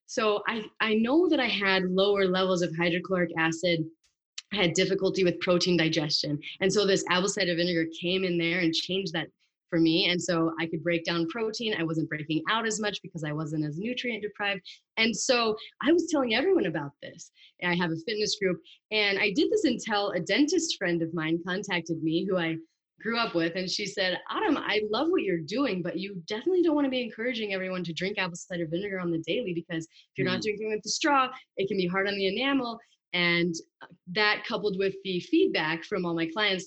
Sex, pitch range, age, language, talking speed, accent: female, 170-215 Hz, 30-49, English, 215 wpm, American